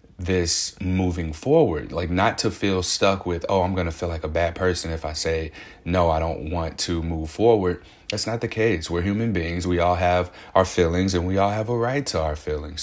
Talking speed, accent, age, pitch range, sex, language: 230 wpm, American, 30-49, 85-100 Hz, male, English